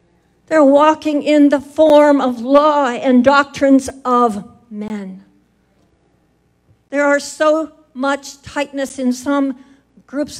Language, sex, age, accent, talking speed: English, female, 60-79, American, 110 wpm